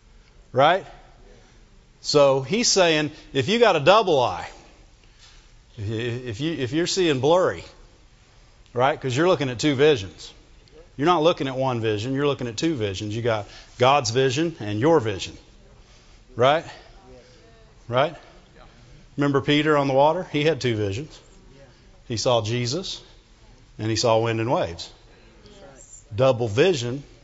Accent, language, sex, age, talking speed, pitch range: American, English, male, 50-69, 140 wpm, 115-160 Hz